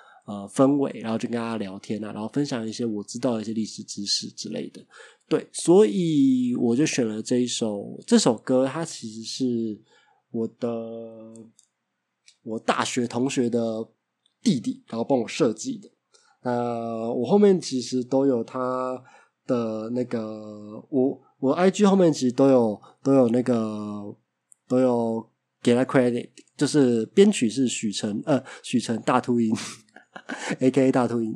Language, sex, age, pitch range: Chinese, male, 20-39, 115-140 Hz